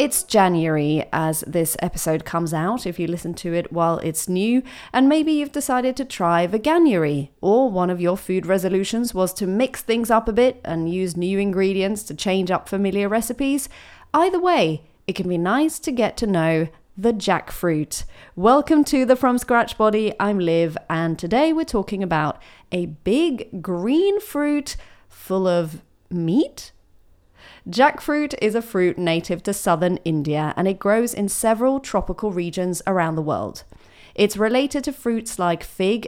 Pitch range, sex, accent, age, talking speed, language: 170-245 Hz, female, British, 30-49, 165 wpm, English